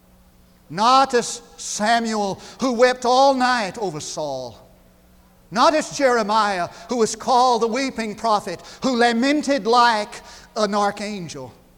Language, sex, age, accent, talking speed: English, male, 40-59, American, 115 wpm